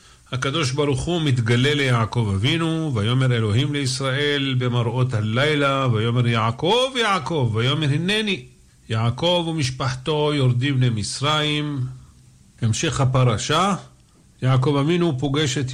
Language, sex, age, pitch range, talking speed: Hebrew, male, 50-69, 120-150 Hz, 100 wpm